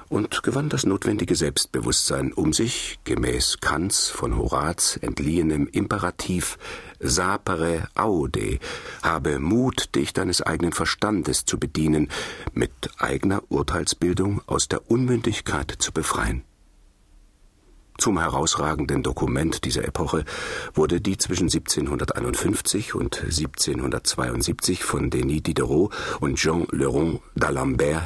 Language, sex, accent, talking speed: German, male, German, 105 wpm